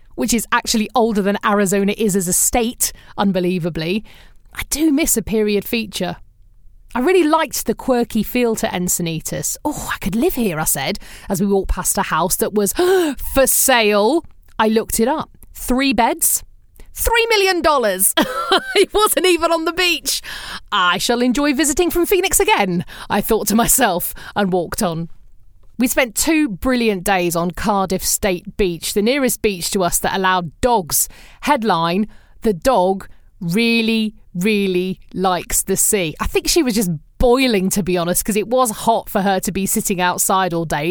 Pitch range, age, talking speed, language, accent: 190-265 Hz, 30-49, 170 wpm, English, British